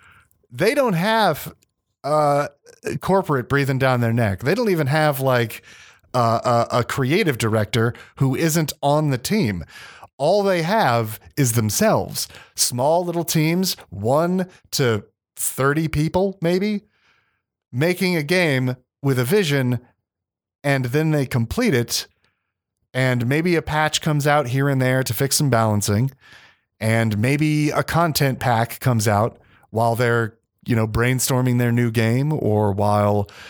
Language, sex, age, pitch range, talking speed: English, male, 30-49, 110-145 Hz, 140 wpm